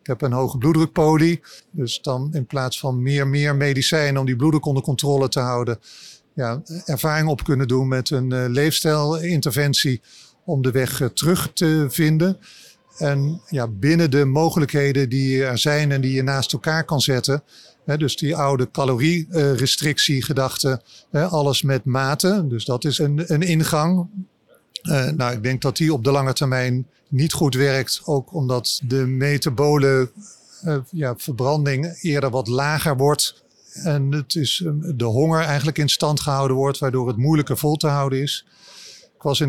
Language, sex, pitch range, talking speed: Dutch, male, 135-155 Hz, 170 wpm